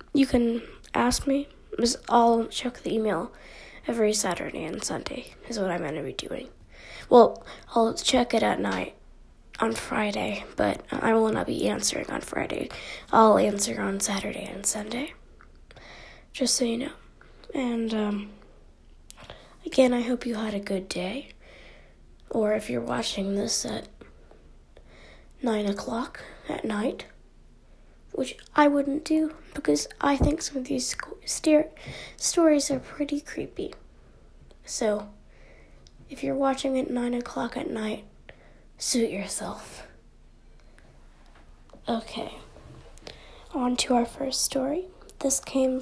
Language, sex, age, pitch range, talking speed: English, female, 10-29, 200-270 Hz, 130 wpm